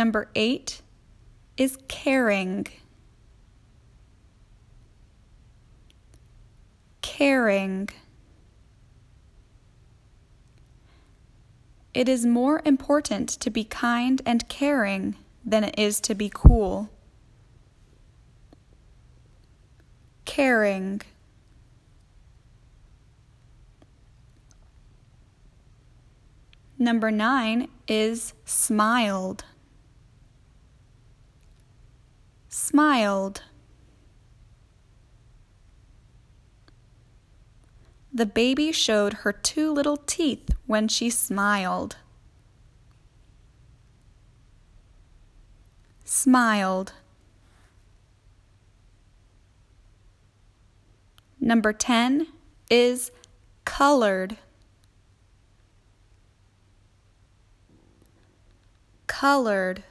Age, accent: 10-29, American